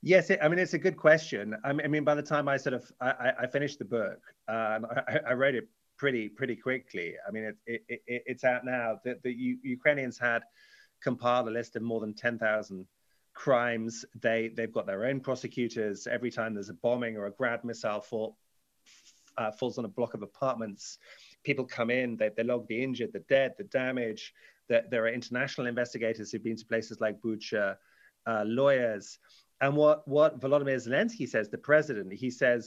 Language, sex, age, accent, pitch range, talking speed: English, male, 30-49, British, 115-135 Hz, 210 wpm